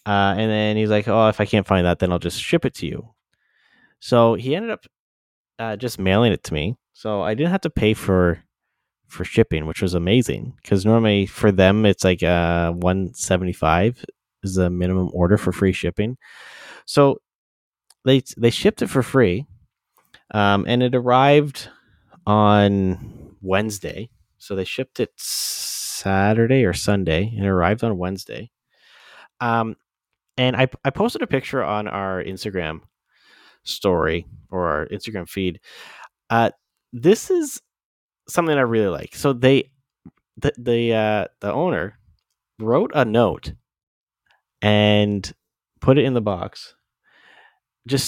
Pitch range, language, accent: 95-120 Hz, English, American